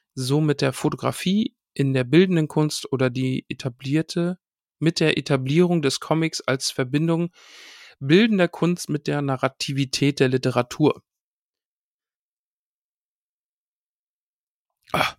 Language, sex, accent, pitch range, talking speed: German, male, German, 125-155 Hz, 105 wpm